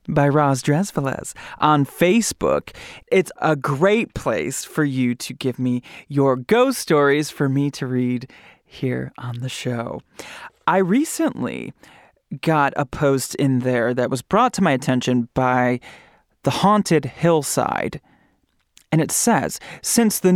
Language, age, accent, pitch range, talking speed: English, 30-49, American, 130-185 Hz, 140 wpm